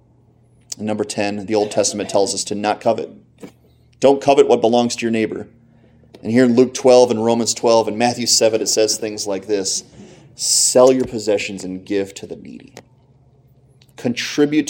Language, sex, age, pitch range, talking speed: English, male, 30-49, 100-120 Hz, 175 wpm